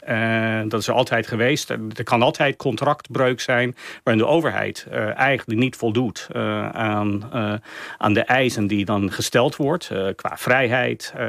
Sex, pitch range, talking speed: male, 110-125 Hz, 165 wpm